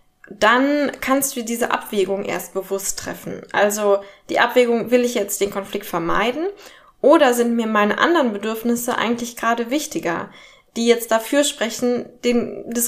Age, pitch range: 20-39, 205-255 Hz